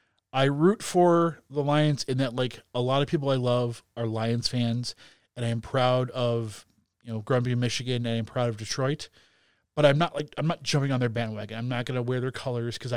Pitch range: 110-135 Hz